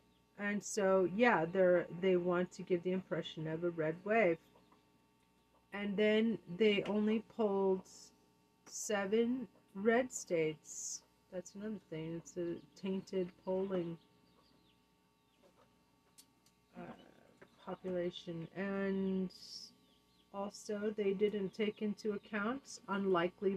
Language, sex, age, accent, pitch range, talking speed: English, female, 40-59, American, 155-205 Hz, 100 wpm